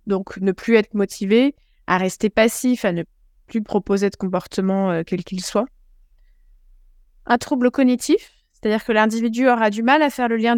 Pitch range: 195-240 Hz